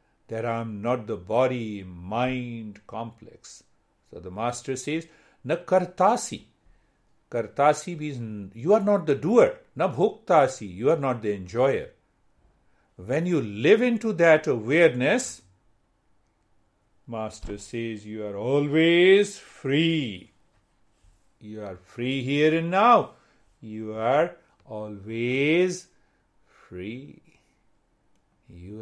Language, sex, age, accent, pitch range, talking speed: English, male, 50-69, Indian, 105-150 Hz, 105 wpm